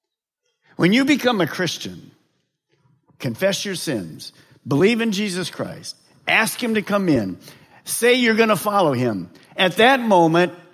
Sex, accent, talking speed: male, American, 145 wpm